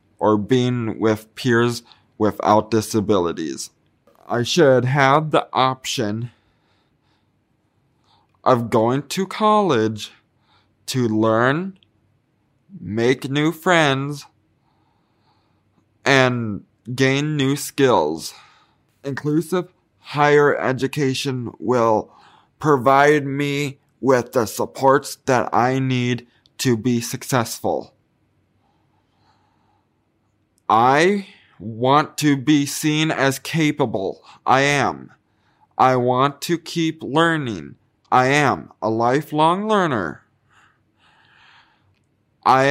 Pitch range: 110-140 Hz